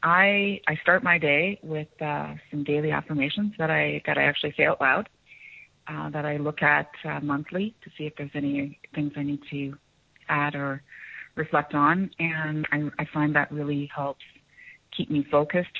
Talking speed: 180 wpm